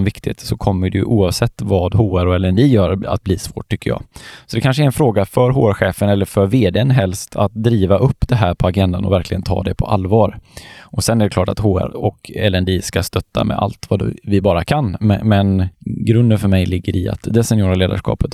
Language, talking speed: Swedish, 225 wpm